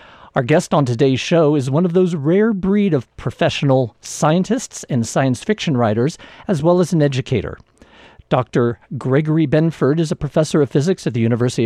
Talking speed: 175 wpm